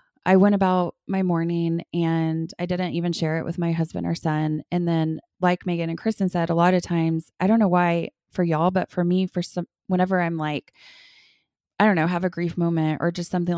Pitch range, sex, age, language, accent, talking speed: 165-190 Hz, female, 20-39, English, American, 225 wpm